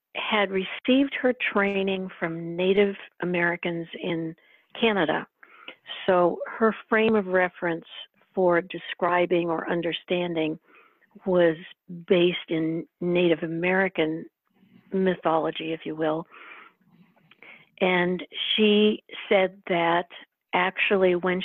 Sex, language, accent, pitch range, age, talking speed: female, English, American, 165-200 Hz, 50-69, 90 wpm